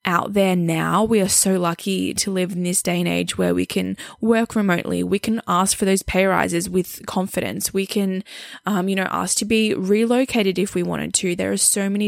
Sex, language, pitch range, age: female, English, 185-210 Hz, 10-29